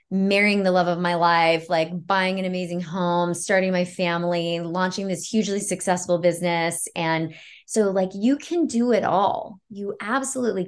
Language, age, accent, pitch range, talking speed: English, 20-39, American, 175-230 Hz, 165 wpm